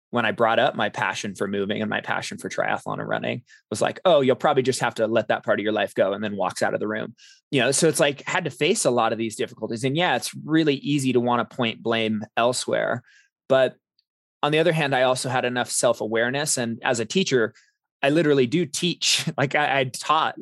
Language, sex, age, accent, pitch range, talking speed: English, male, 20-39, American, 120-150 Hz, 245 wpm